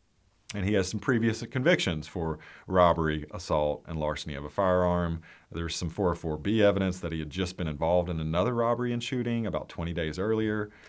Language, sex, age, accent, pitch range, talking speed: English, male, 40-59, American, 85-115 Hz, 180 wpm